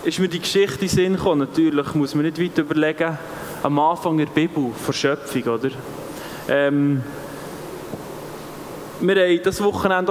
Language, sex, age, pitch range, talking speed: German, male, 20-39, 160-210 Hz, 135 wpm